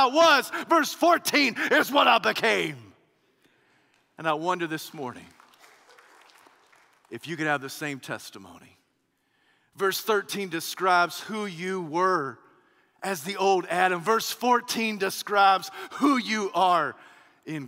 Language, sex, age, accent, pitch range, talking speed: English, male, 40-59, American, 140-195 Hz, 120 wpm